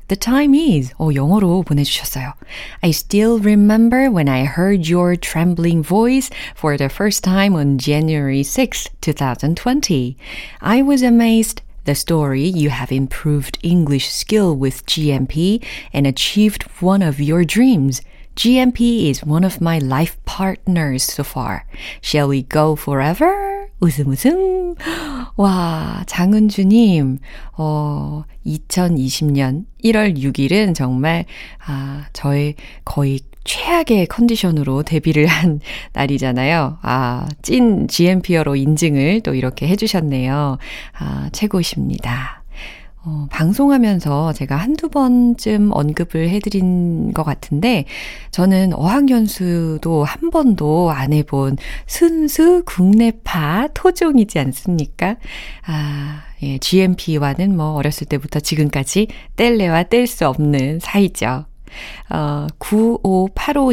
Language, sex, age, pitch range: Korean, female, 30-49, 145-210 Hz